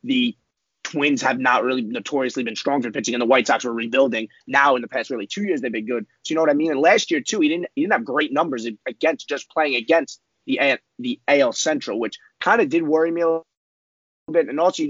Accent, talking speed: American, 255 wpm